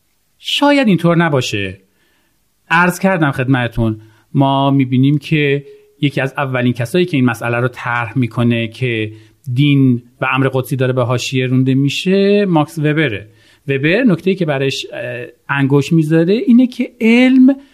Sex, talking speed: male, 140 wpm